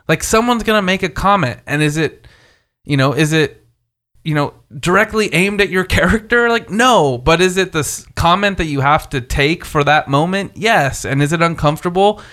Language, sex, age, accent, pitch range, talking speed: English, male, 20-39, American, 140-190 Hz, 200 wpm